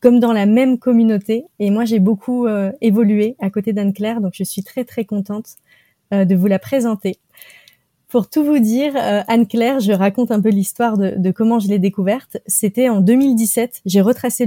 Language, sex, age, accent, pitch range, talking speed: French, female, 30-49, French, 205-250 Hz, 195 wpm